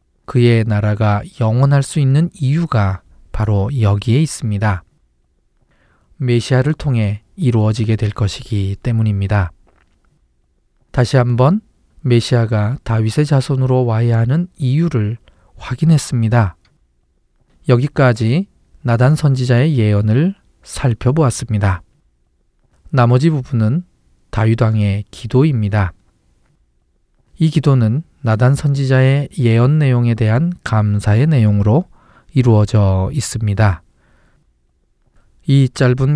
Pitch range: 105-135 Hz